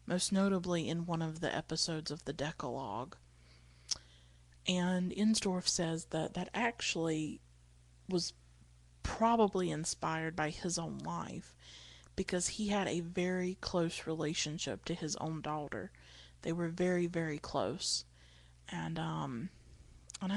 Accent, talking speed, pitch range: American, 125 wpm, 115-175 Hz